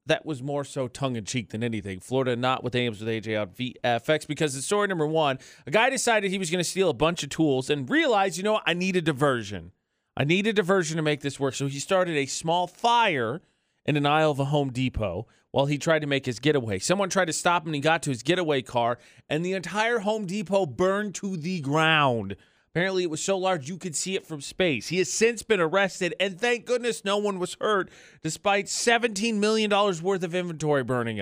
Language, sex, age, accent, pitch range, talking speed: English, male, 30-49, American, 135-185 Hz, 230 wpm